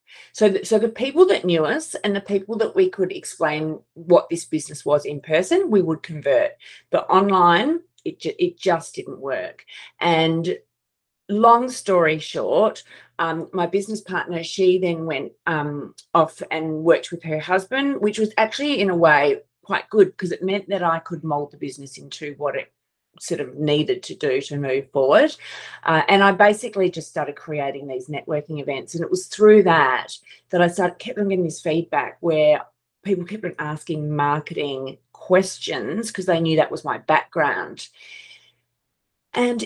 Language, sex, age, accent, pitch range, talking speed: English, female, 40-59, Australian, 155-205 Hz, 170 wpm